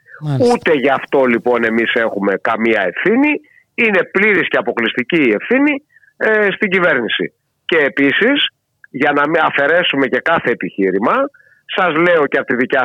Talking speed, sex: 150 wpm, male